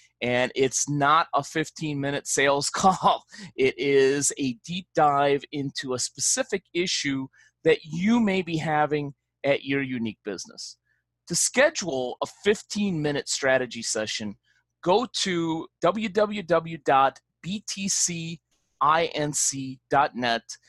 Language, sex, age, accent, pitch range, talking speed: English, male, 30-49, American, 130-175 Hz, 100 wpm